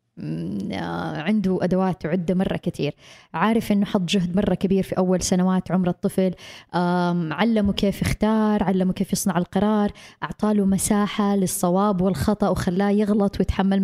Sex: female